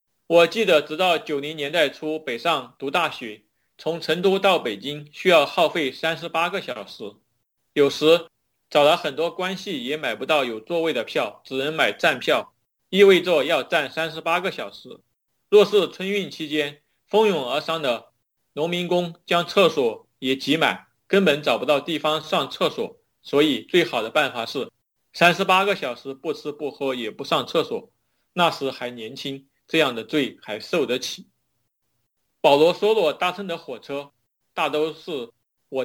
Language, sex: Chinese, male